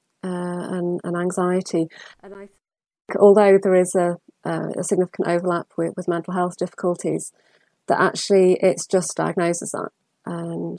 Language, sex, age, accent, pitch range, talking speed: English, female, 30-49, British, 175-200 Hz, 140 wpm